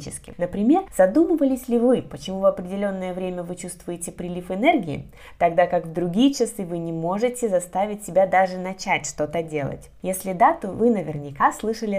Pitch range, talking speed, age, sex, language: 165-230 Hz, 160 wpm, 20-39, female, Russian